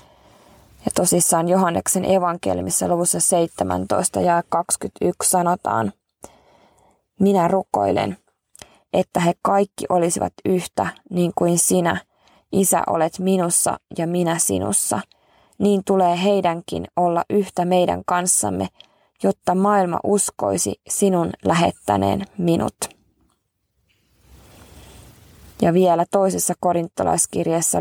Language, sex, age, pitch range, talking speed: Finnish, female, 20-39, 165-190 Hz, 90 wpm